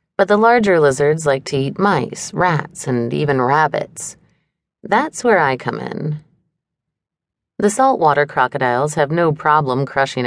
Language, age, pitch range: English, 30-49, 140-180 Hz